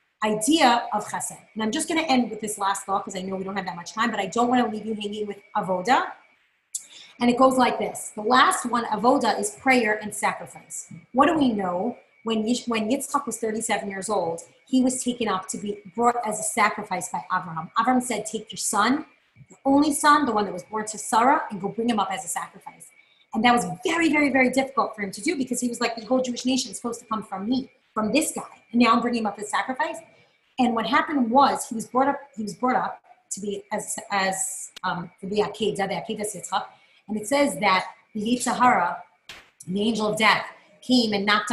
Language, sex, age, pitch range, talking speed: English, female, 30-49, 205-260 Hz, 230 wpm